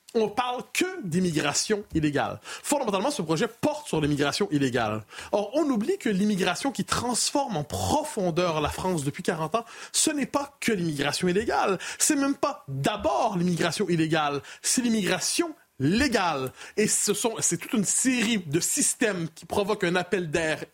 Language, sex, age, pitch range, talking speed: French, male, 30-49, 160-235 Hz, 160 wpm